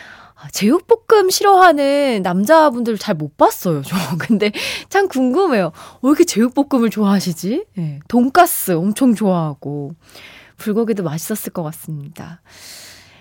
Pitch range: 185-315 Hz